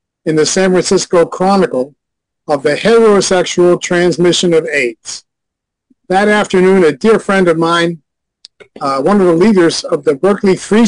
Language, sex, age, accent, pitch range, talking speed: English, male, 50-69, American, 175-230 Hz, 150 wpm